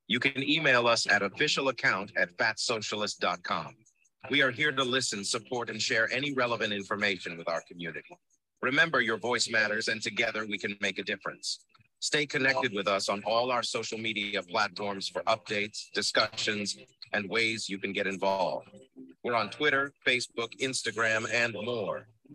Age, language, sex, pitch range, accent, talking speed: 50-69, English, male, 105-135 Hz, American, 160 wpm